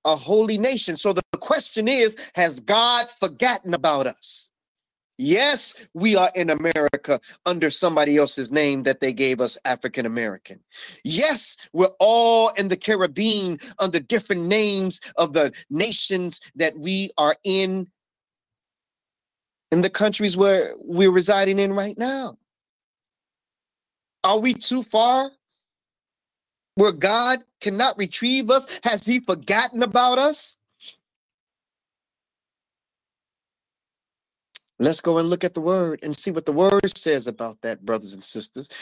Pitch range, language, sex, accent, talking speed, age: 170-220 Hz, English, male, American, 130 wpm, 30-49